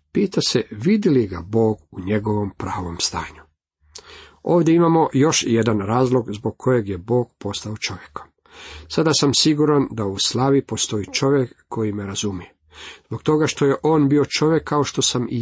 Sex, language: male, Croatian